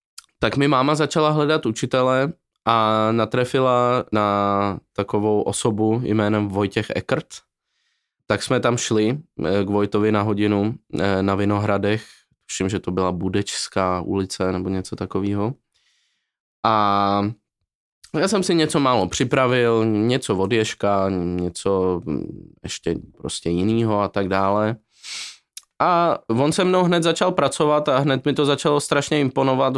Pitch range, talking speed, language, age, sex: 100-125 Hz, 125 wpm, Czech, 20-39, male